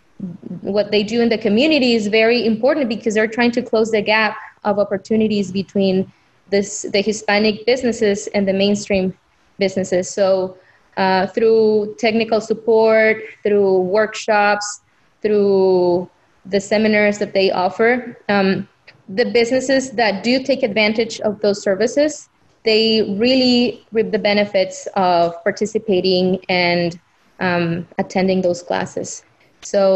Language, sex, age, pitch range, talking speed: English, female, 20-39, 195-220 Hz, 125 wpm